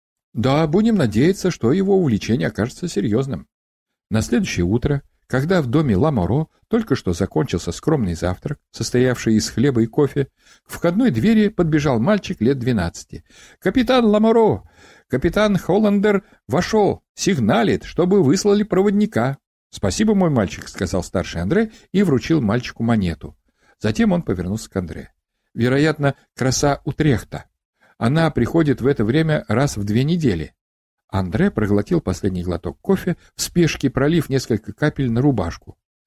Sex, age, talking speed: male, 60-79, 145 wpm